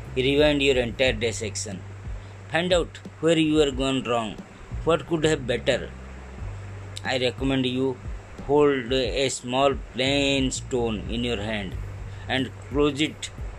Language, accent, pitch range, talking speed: Hindi, native, 100-140 Hz, 130 wpm